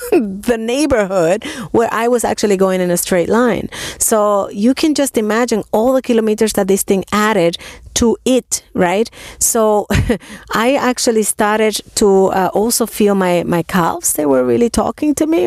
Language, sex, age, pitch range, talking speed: English, female, 30-49, 175-240 Hz, 165 wpm